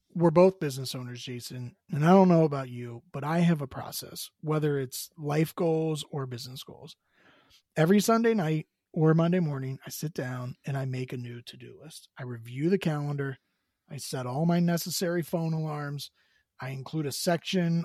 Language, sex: English, male